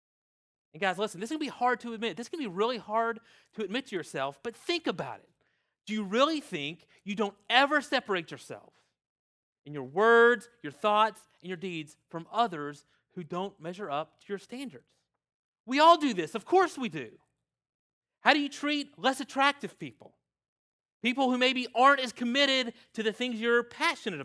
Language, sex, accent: English, male, American